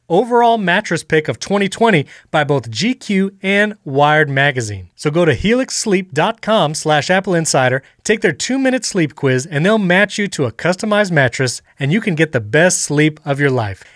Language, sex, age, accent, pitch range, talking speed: English, male, 30-49, American, 140-195 Hz, 170 wpm